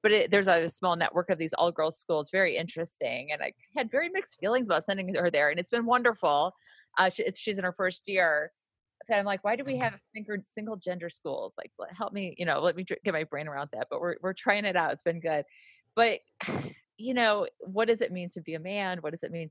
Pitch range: 155-205 Hz